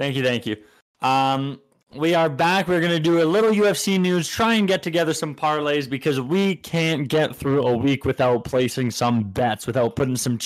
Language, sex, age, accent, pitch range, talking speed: English, male, 20-39, American, 135-165 Hz, 205 wpm